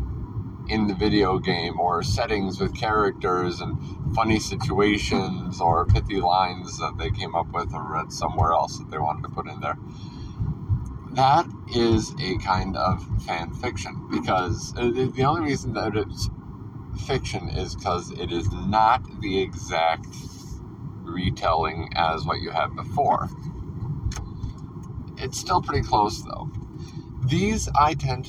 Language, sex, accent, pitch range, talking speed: English, male, American, 100-125 Hz, 140 wpm